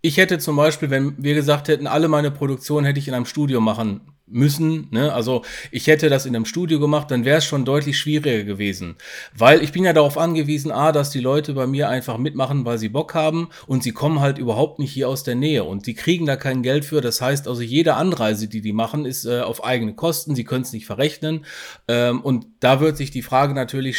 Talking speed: 235 wpm